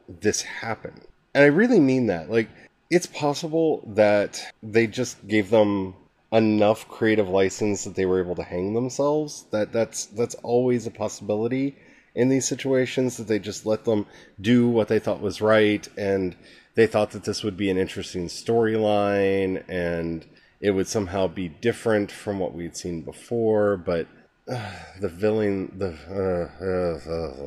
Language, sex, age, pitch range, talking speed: English, male, 30-49, 95-115 Hz, 160 wpm